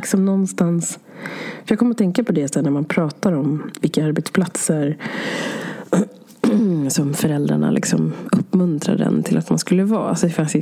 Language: Swedish